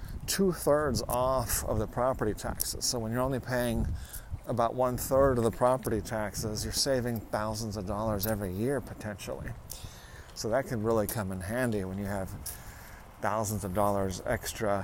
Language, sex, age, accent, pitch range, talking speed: English, male, 40-59, American, 105-125 Hz, 160 wpm